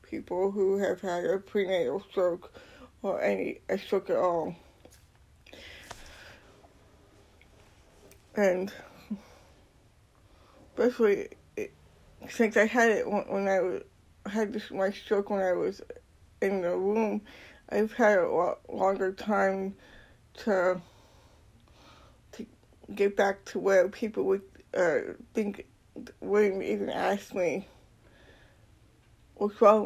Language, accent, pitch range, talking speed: English, American, 170-220 Hz, 110 wpm